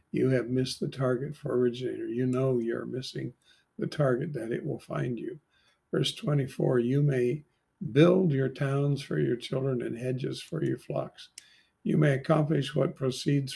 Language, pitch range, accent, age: English, 125-150 Hz, American, 50-69